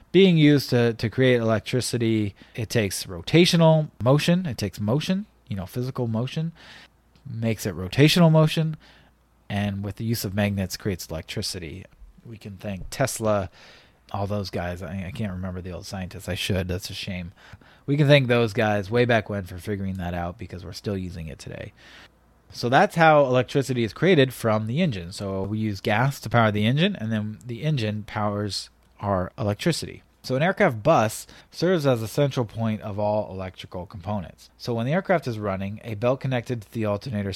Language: English